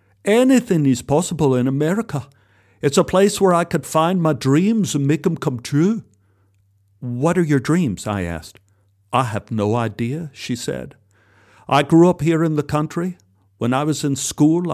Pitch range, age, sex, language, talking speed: 105-155 Hz, 50-69, male, English, 175 wpm